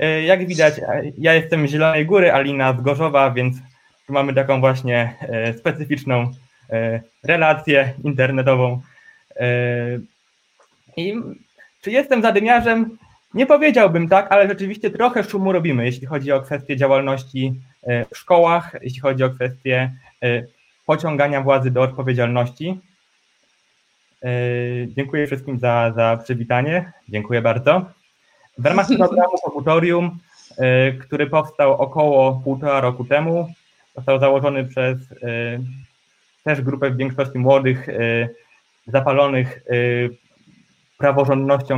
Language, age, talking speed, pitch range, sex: Polish, 20-39, 100 wpm, 130-165 Hz, male